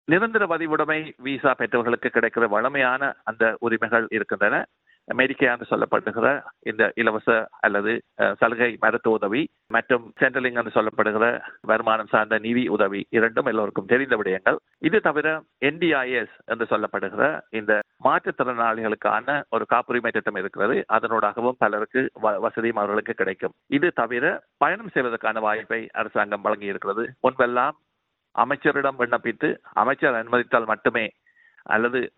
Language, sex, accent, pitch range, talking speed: Tamil, male, native, 110-130 Hz, 110 wpm